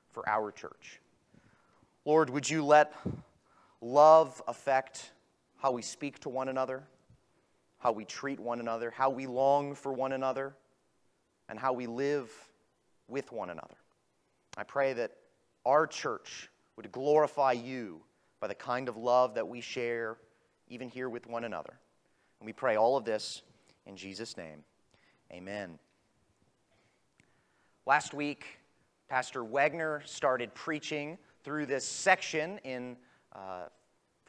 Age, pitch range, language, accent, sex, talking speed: 30-49, 130-155 Hz, English, American, male, 130 wpm